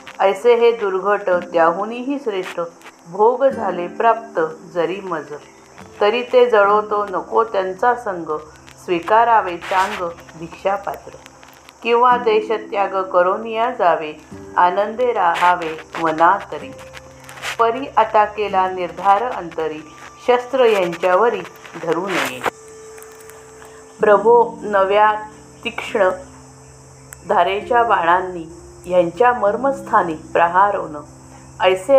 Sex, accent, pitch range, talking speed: female, native, 170-225 Hz, 85 wpm